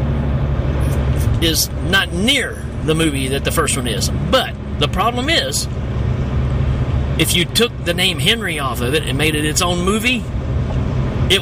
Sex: male